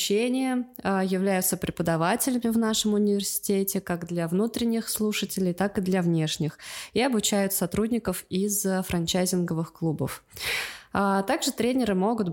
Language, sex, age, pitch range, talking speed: Russian, female, 20-39, 180-215 Hz, 105 wpm